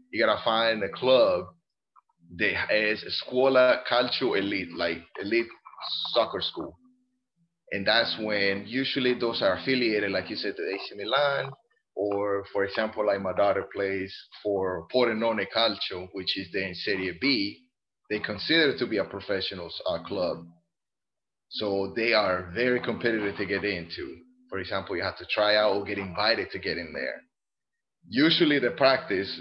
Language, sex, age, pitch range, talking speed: English, male, 30-49, 100-130 Hz, 155 wpm